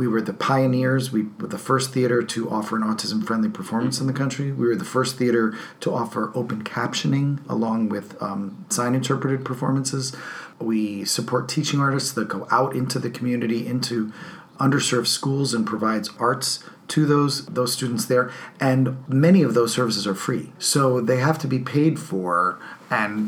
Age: 40-59